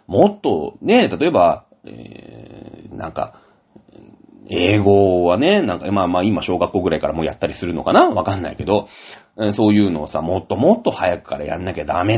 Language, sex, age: Japanese, male, 40-59